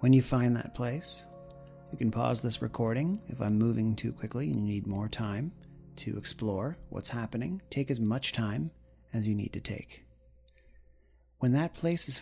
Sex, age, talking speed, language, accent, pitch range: male, 40-59, 180 wpm, English, American, 105-140 Hz